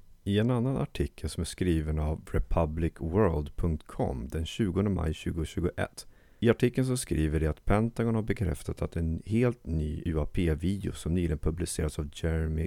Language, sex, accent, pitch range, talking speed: Swedish, male, native, 80-100 Hz, 150 wpm